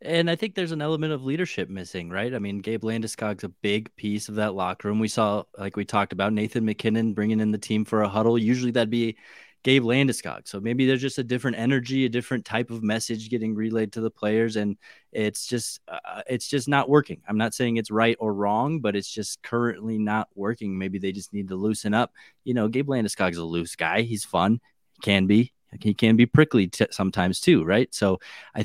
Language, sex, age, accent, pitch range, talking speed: English, male, 20-39, American, 100-120 Hz, 225 wpm